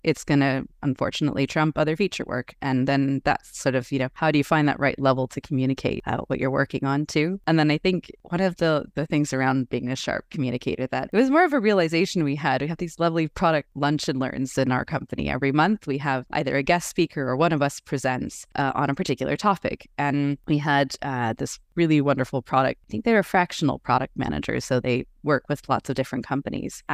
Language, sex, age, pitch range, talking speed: English, female, 20-39, 135-165 Hz, 230 wpm